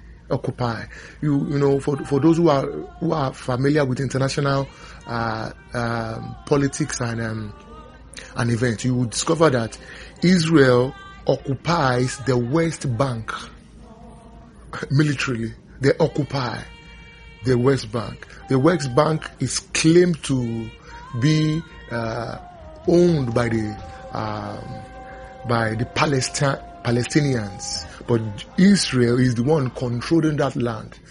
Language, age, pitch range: English, 30-49, 115-150 Hz